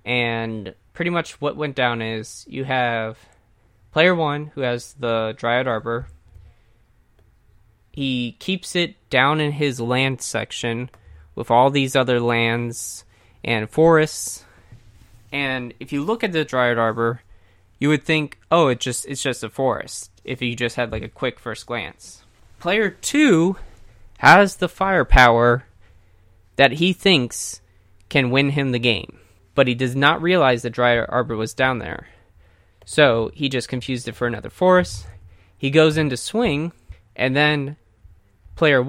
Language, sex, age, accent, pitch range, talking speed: English, male, 20-39, American, 100-140 Hz, 150 wpm